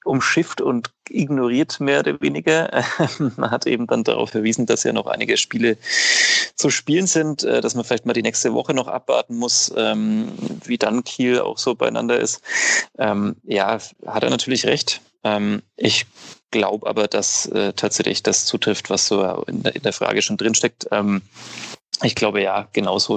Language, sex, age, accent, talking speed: German, male, 30-49, German, 155 wpm